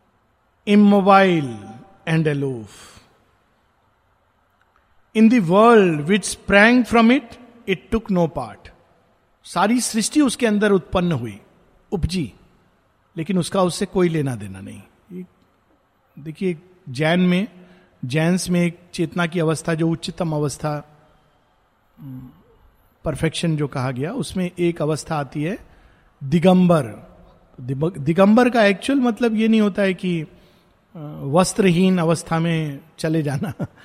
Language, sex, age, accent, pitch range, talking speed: Hindi, male, 50-69, native, 150-200 Hz, 115 wpm